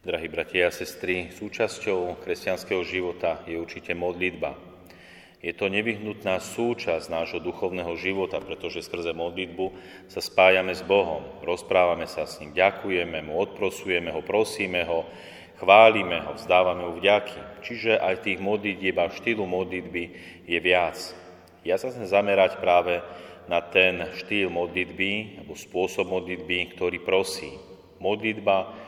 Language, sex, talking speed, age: Slovak, male, 130 wpm, 30-49